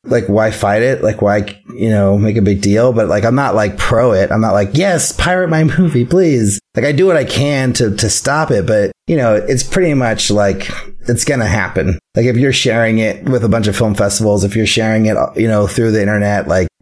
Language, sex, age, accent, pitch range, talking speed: English, male, 30-49, American, 100-125 Hz, 245 wpm